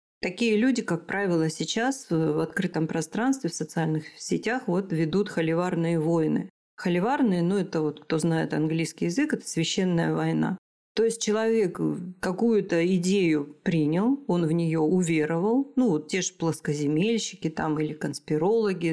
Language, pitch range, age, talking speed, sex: Russian, 160-210 Hz, 40-59, 140 wpm, female